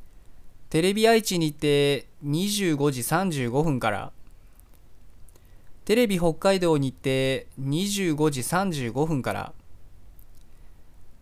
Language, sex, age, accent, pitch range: Japanese, male, 20-39, native, 110-160 Hz